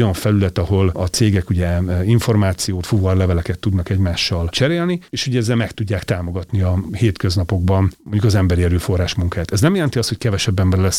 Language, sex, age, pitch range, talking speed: Hungarian, male, 40-59, 90-120 Hz, 180 wpm